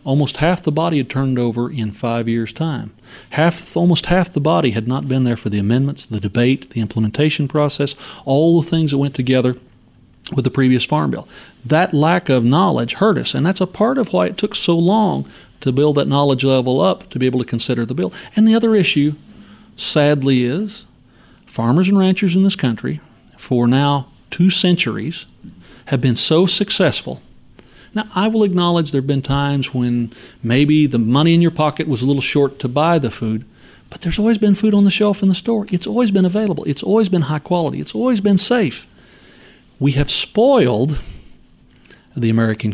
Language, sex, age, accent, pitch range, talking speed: English, male, 40-59, American, 130-185 Hz, 195 wpm